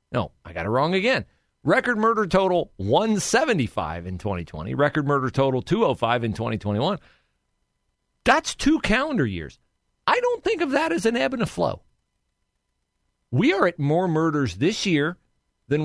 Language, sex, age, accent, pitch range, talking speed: English, male, 40-59, American, 110-180 Hz, 155 wpm